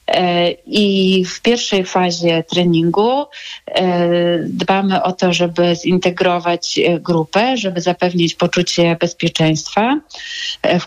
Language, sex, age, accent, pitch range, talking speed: Polish, female, 30-49, native, 170-205 Hz, 90 wpm